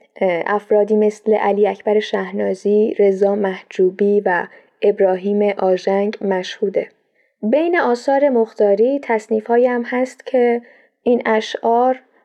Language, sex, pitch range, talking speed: Persian, female, 205-245 Hz, 100 wpm